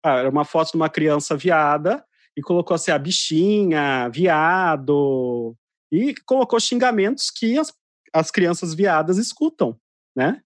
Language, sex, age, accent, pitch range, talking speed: Portuguese, male, 30-49, Brazilian, 155-220 Hz, 140 wpm